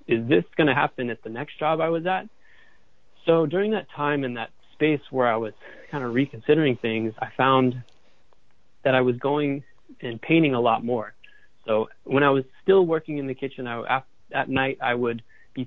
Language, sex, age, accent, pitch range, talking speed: English, male, 20-39, American, 120-145 Hz, 195 wpm